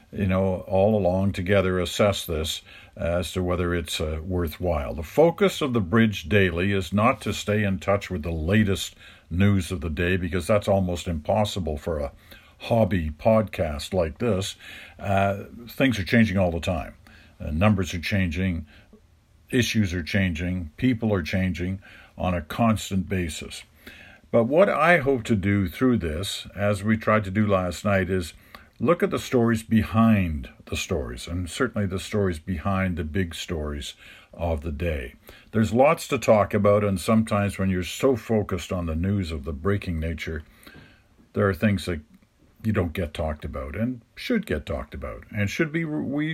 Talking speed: 170 wpm